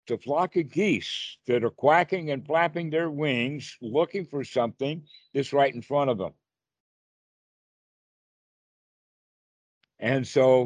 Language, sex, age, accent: English, male, 60-79, American